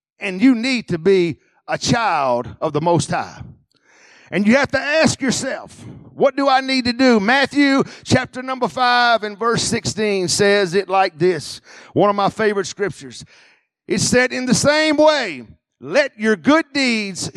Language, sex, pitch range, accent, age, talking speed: English, male, 195-270 Hz, American, 50-69, 170 wpm